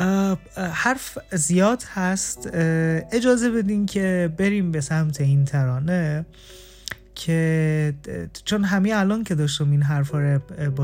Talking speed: 110 wpm